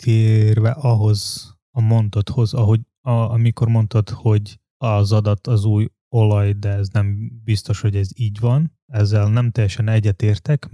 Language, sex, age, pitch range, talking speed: Hungarian, male, 20-39, 105-120 Hz, 135 wpm